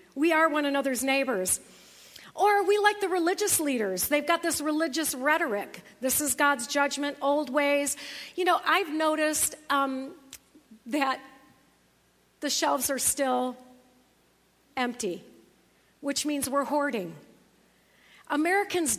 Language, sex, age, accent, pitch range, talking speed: English, female, 50-69, American, 255-300 Hz, 120 wpm